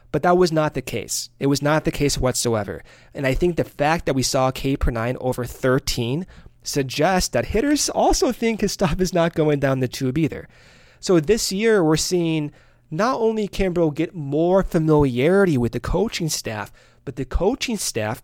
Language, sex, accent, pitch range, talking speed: English, male, American, 125-170 Hz, 185 wpm